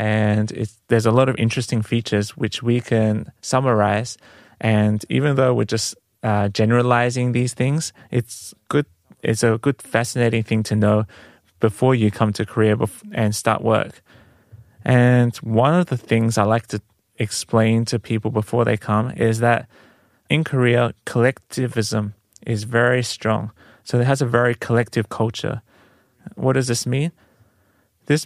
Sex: male